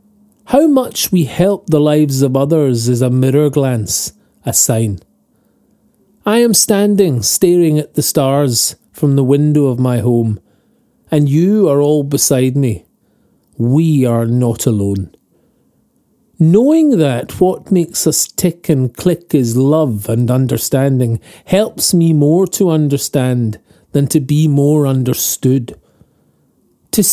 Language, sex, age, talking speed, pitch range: English, male, 40-59, 135 wpm, 130-180 Hz